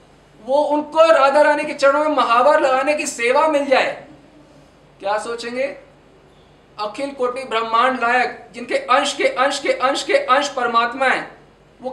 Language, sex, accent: Hindi, male, native